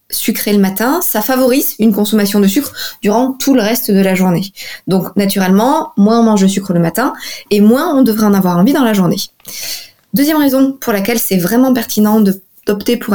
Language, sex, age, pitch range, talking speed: French, female, 20-39, 185-235 Hz, 200 wpm